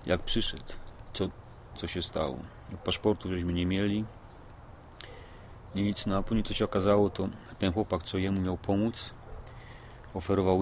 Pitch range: 90-105 Hz